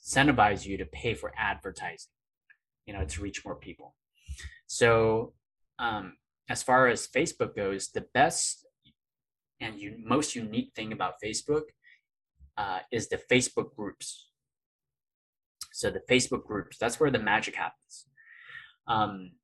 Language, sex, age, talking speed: English, male, 20-39, 130 wpm